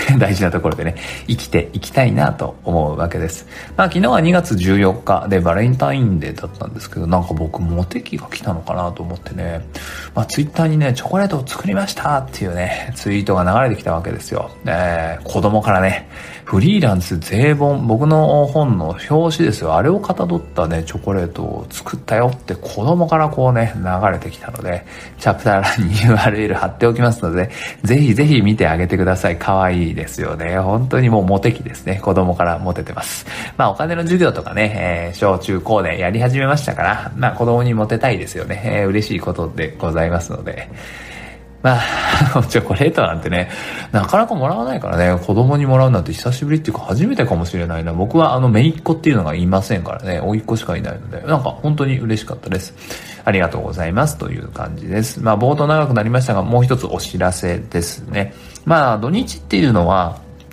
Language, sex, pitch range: Japanese, male, 90-125 Hz